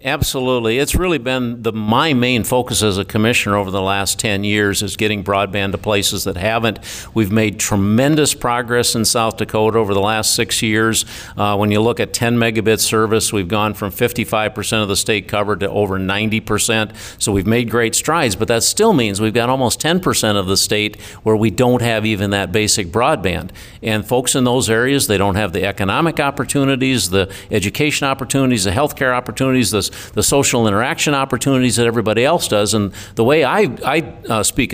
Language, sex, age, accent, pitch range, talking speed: English, male, 50-69, American, 105-125 Hz, 190 wpm